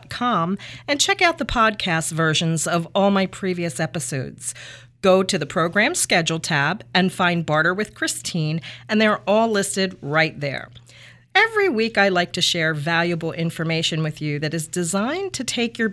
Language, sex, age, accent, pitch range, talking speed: English, female, 40-59, American, 150-200 Hz, 165 wpm